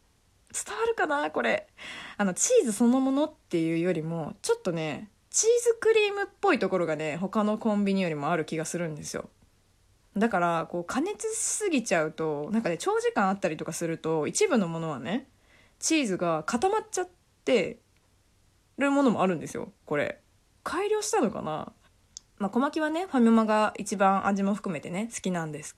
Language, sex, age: Japanese, female, 20-39